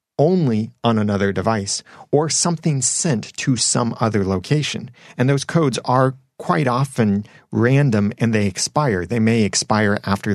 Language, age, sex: English, 30-49, male